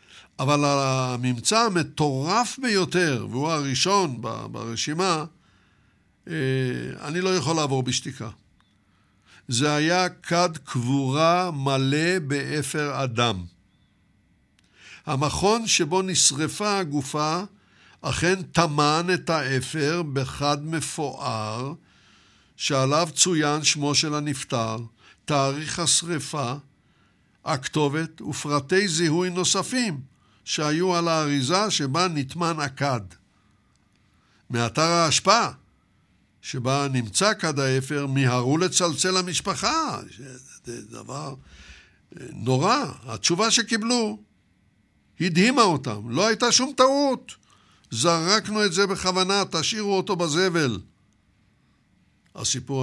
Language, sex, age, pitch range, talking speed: Hebrew, male, 60-79, 120-175 Hz, 85 wpm